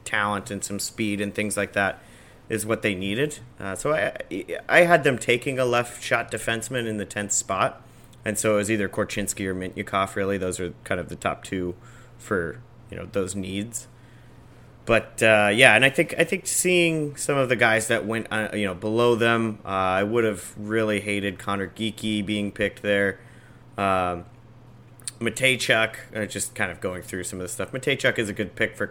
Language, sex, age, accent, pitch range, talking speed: English, male, 30-49, American, 95-120 Hz, 200 wpm